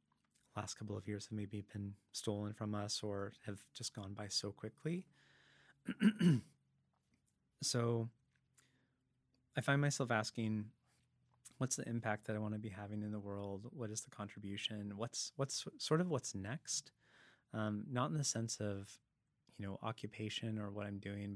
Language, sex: English, male